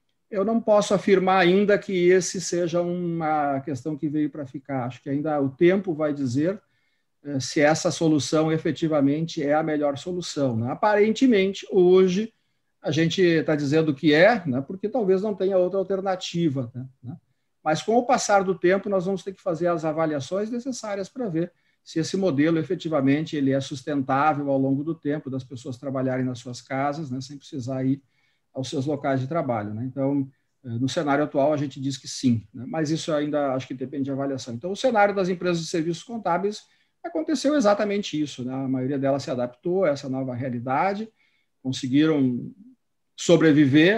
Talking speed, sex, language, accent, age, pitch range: 175 wpm, male, Portuguese, Brazilian, 50-69, 135-180 Hz